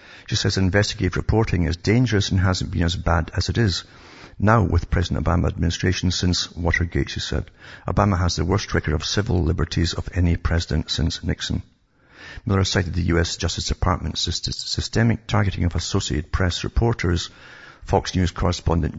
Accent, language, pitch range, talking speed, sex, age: British, English, 85-100 Hz, 160 wpm, male, 50-69